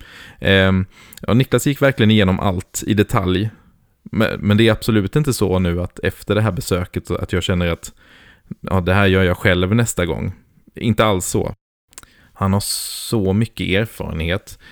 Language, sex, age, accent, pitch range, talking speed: English, male, 20-39, Swedish, 90-105 Hz, 170 wpm